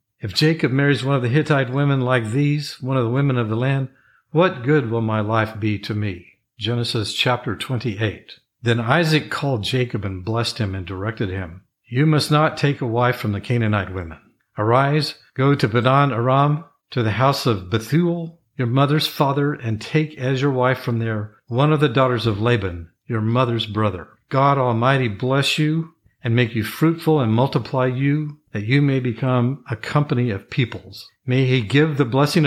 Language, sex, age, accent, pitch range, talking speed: English, male, 50-69, American, 110-140 Hz, 185 wpm